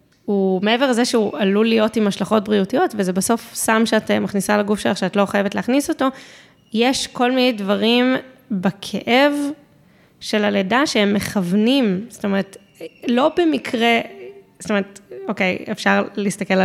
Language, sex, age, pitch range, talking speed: Hebrew, female, 20-39, 195-240 Hz, 140 wpm